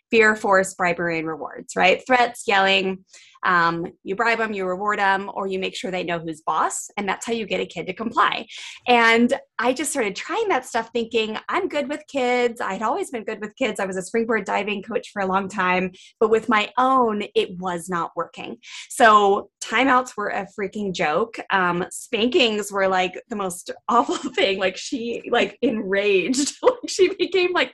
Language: English